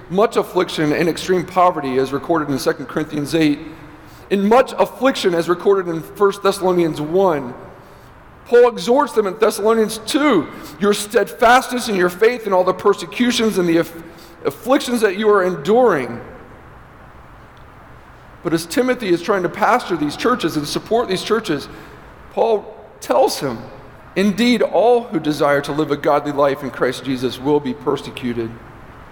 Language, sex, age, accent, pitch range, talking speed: English, male, 40-59, American, 155-245 Hz, 155 wpm